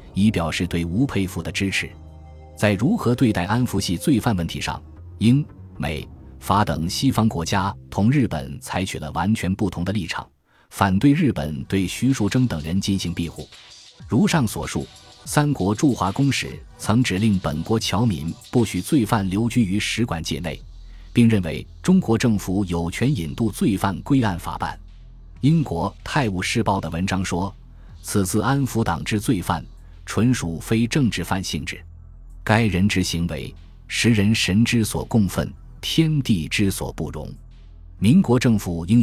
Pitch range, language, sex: 85-115 Hz, Chinese, male